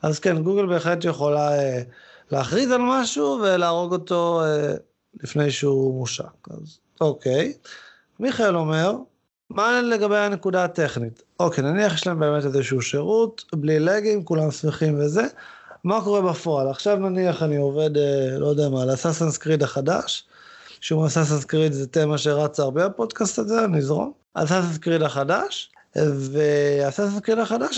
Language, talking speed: Hebrew, 140 wpm